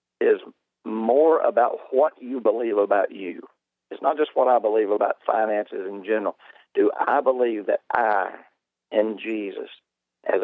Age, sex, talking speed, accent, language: 50-69, male, 150 wpm, American, English